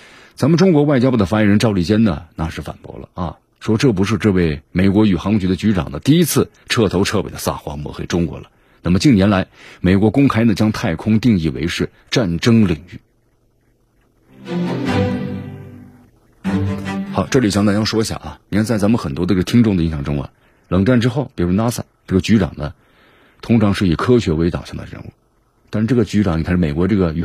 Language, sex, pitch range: Chinese, male, 90-115 Hz